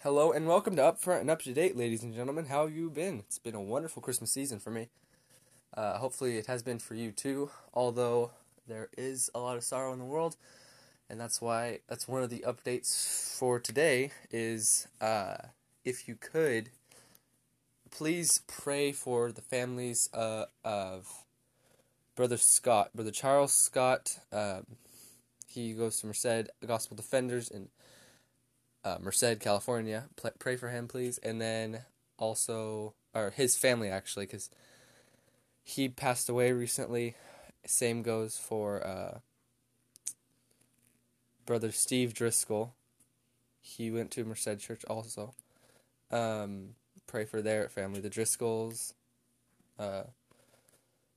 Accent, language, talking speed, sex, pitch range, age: American, English, 140 wpm, male, 110-125 Hz, 20-39